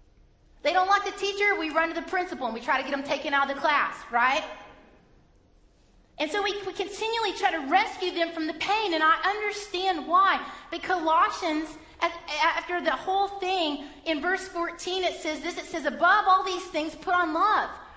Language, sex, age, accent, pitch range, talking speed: English, female, 30-49, American, 320-375 Hz, 195 wpm